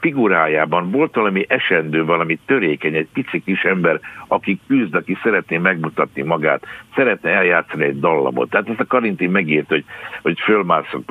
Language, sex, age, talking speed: Hungarian, male, 60-79, 150 wpm